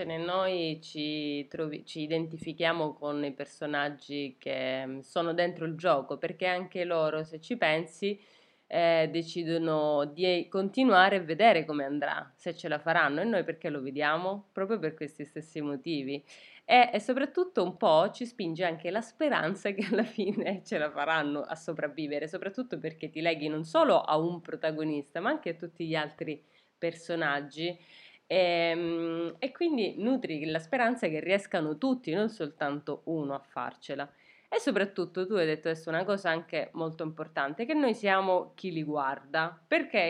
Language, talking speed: Italian, 160 wpm